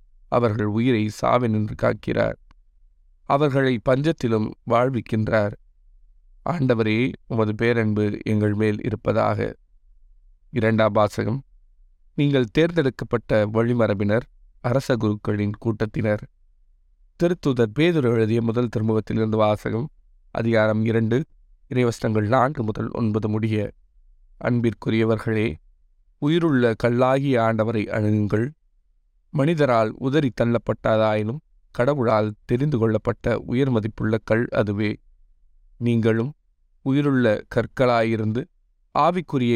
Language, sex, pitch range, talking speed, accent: Tamil, male, 105-125 Hz, 80 wpm, native